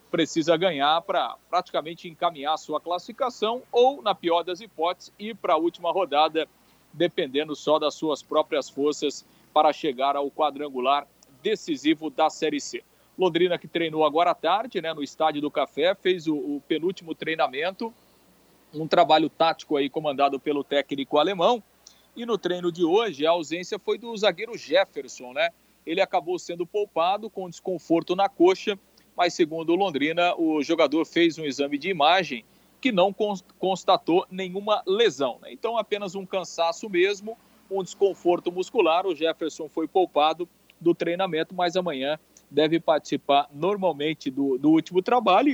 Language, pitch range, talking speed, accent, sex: Portuguese, 155-205 Hz, 150 wpm, Brazilian, male